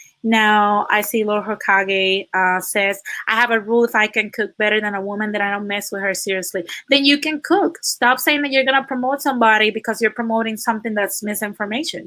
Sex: female